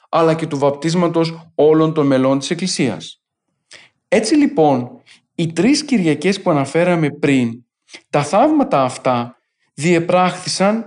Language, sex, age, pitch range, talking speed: Greek, male, 40-59, 135-180 Hz, 115 wpm